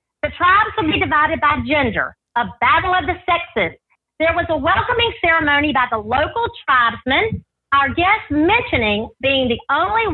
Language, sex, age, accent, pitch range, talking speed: English, female, 50-69, American, 265-355 Hz, 160 wpm